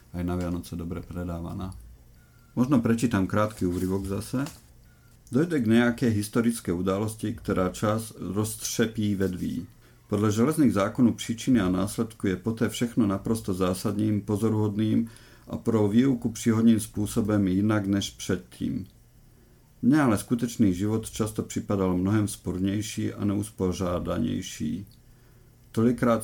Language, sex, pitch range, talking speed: Slovak, male, 95-115 Hz, 115 wpm